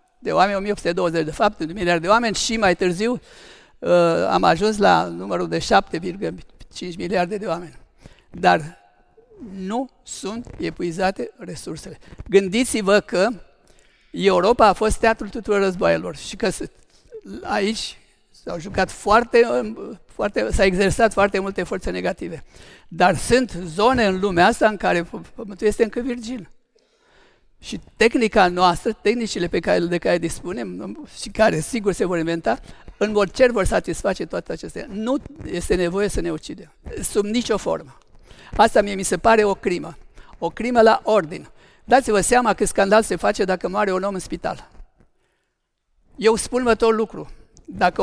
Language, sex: Romanian, male